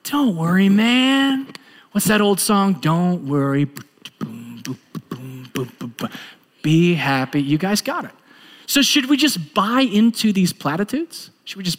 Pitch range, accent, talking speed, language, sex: 135-210 Hz, American, 130 wpm, English, male